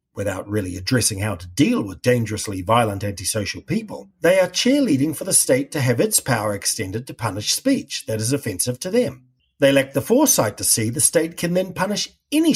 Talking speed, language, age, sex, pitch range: 200 wpm, English, 50-69, male, 110-185 Hz